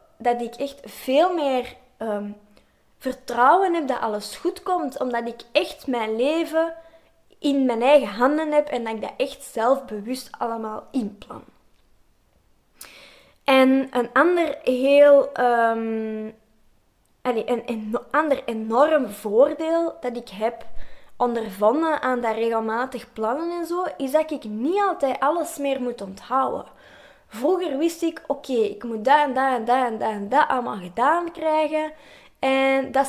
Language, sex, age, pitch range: Dutch, female, 20-39, 235-310 Hz